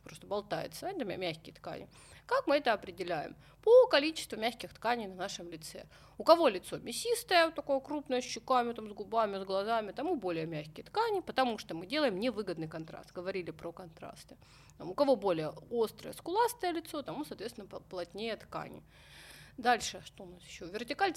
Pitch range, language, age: 180-270 Hz, Russian, 30-49